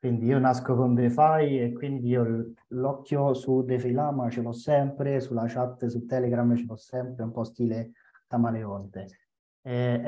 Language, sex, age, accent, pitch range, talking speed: Italian, male, 30-49, native, 125-165 Hz, 160 wpm